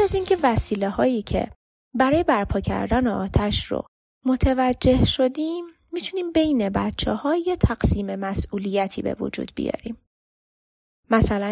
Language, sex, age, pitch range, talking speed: Persian, female, 20-39, 200-280 Hz, 120 wpm